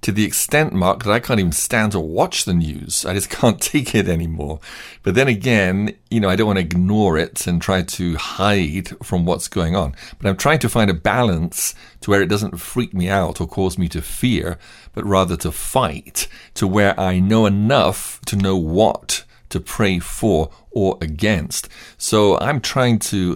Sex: male